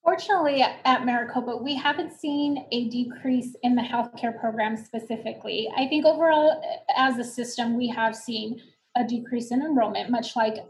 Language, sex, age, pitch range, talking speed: English, female, 20-39, 225-255 Hz, 155 wpm